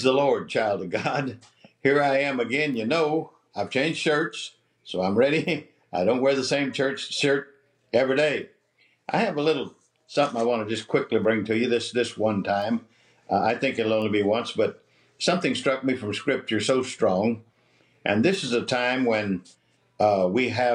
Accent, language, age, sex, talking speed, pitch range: American, English, 60-79, male, 190 wpm, 110-130 Hz